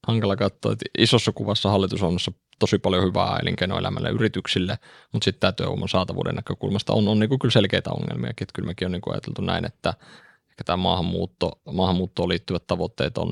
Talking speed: 165 wpm